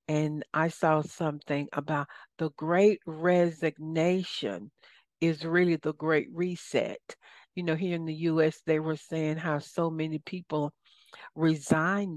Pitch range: 155-180 Hz